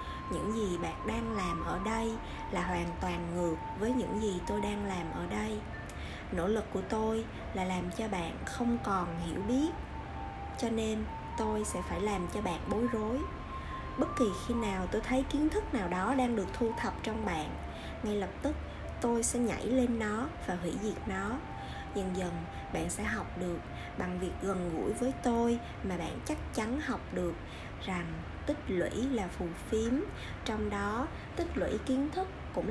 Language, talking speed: Vietnamese, 185 wpm